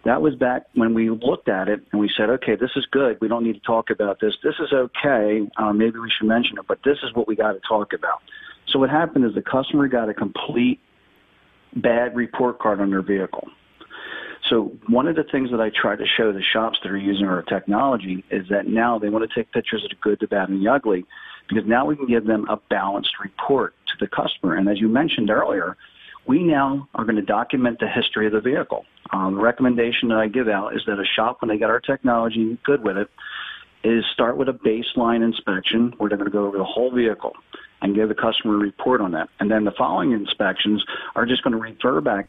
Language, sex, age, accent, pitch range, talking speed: English, male, 40-59, American, 105-125 Hz, 240 wpm